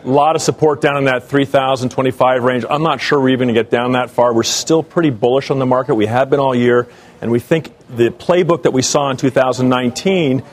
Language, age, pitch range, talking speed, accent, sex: English, 40-59, 120-150 Hz, 240 wpm, American, male